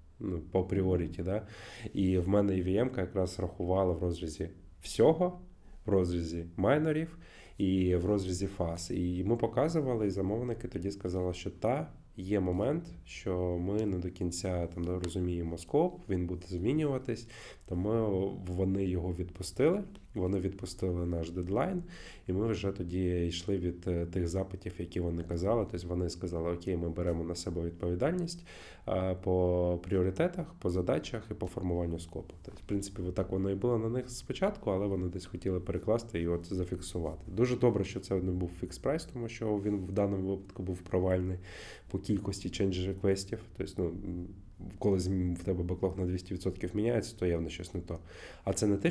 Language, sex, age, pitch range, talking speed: Ukrainian, male, 20-39, 90-100 Hz, 165 wpm